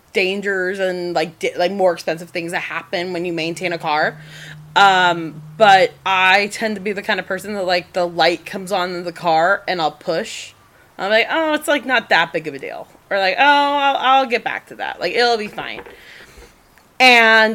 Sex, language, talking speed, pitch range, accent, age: female, English, 210 wpm, 175-230 Hz, American, 20-39